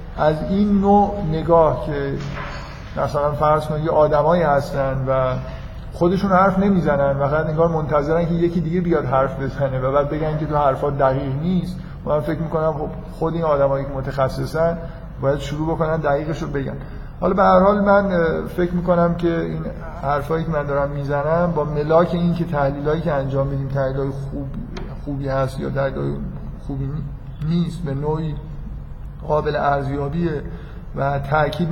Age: 50-69